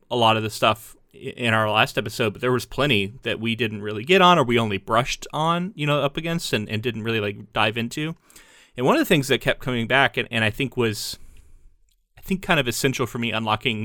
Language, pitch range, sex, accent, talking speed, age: English, 110-130 Hz, male, American, 245 wpm, 30-49